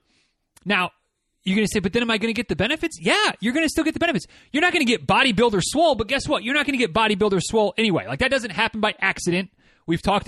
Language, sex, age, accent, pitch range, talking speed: English, male, 30-49, American, 185-230 Hz, 280 wpm